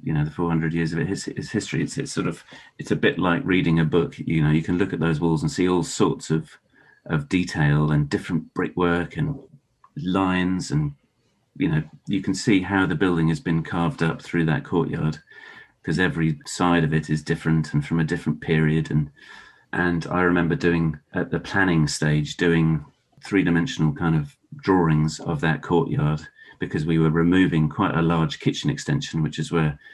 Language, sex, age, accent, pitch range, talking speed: English, male, 40-59, British, 80-90 Hz, 200 wpm